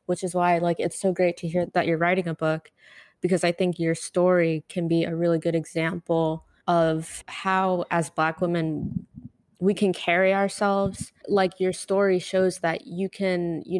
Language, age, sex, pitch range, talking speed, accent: English, 20-39, female, 160-180 Hz, 185 wpm, American